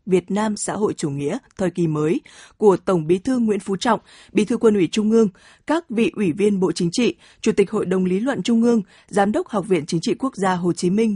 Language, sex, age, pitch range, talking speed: Vietnamese, female, 20-39, 175-225 Hz, 260 wpm